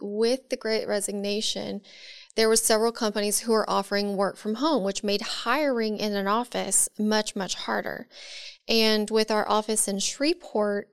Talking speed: 160 wpm